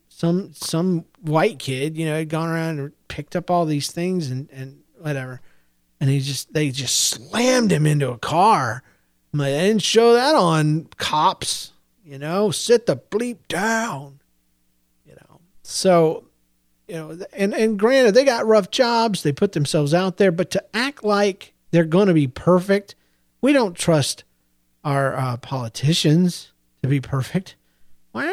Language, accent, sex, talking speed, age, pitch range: English, American, male, 165 wpm, 40-59, 130-175 Hz